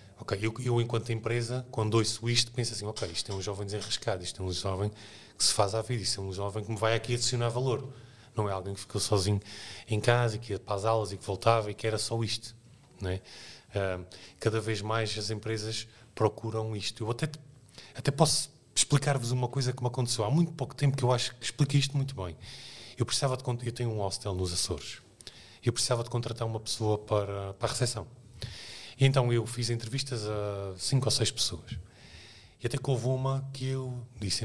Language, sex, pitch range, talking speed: Portuguese, male, 105-125 Hz, 215 wpm